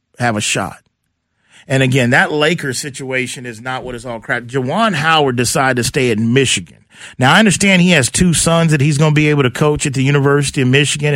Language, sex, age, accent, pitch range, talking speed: English, male, 40-59, American, 120-145 Hz, 220 wpm